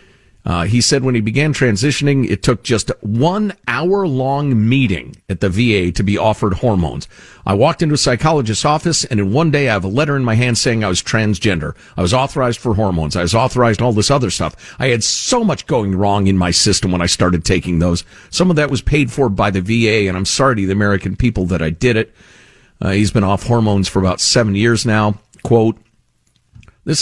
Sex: male